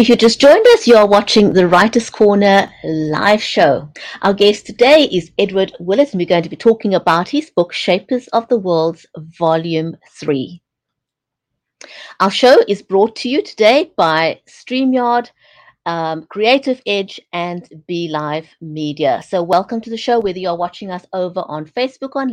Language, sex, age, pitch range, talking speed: English, female, 60-79, 175-235 Hz, 170 wpm